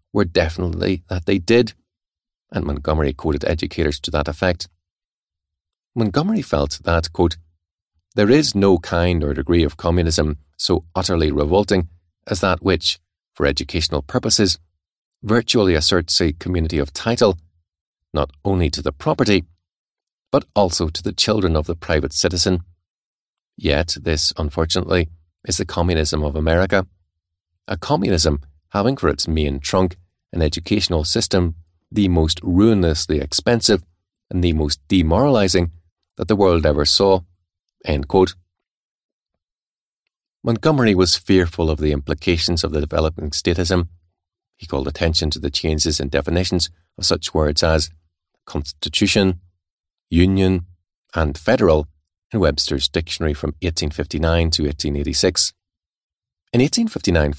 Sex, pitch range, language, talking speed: male, 80-95 Hz, English, 125 wpm